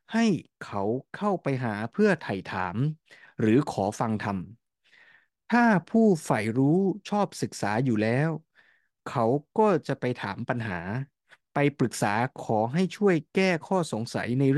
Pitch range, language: 115-170 Hz, Thai